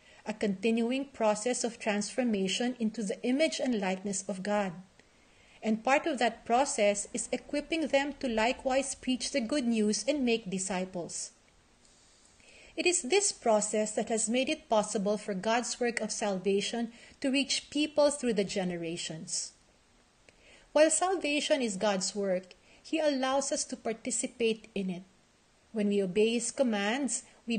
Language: English